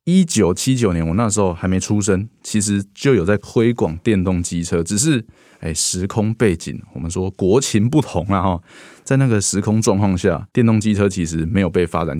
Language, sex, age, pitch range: Chinese, male, 20-39, 85-110 Hz